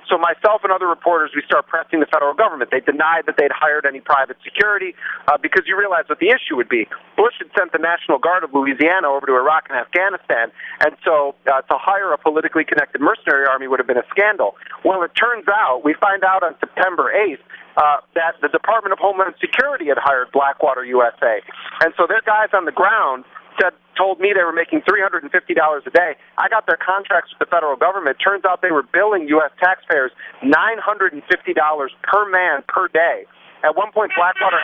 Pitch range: 150-190 Hz